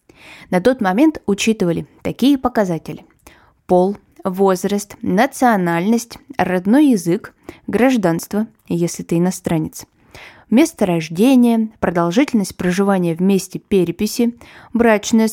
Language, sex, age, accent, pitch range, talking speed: Russian, female, 20-39, native, 180-240 Hz, 90 wpm